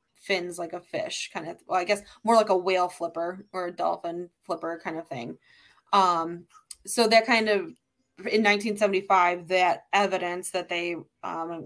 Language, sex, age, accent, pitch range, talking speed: English, female, 20-39, American, 175-200 Hz, 170 wpm